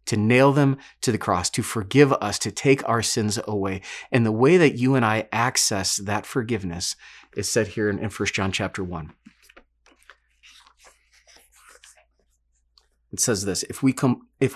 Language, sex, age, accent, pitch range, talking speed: English, male, 30-49, American, 95-130 Hz, 160 wpm